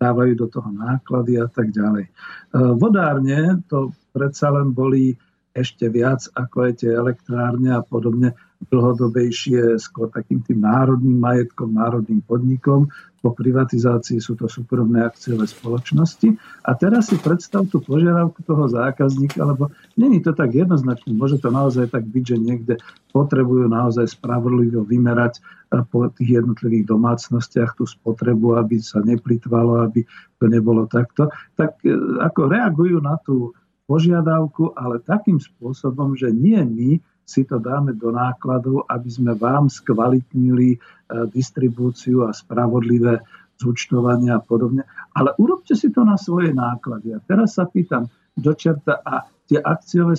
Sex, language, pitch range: male, Slovak, 120-155 Hz